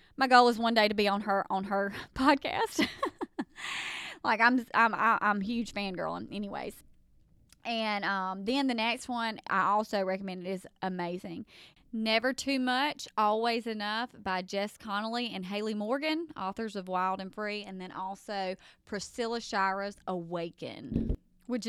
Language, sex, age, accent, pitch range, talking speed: English, female, 20-39, American, 195-255 Hz, 150 wpm